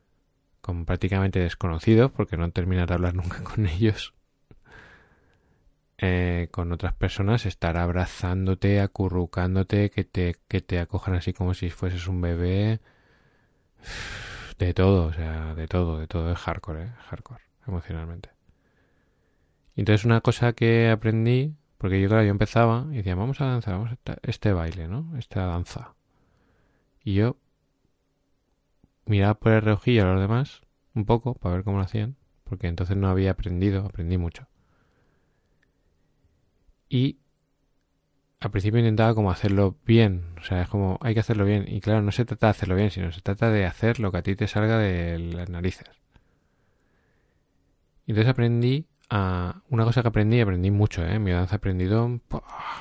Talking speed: 160 wpm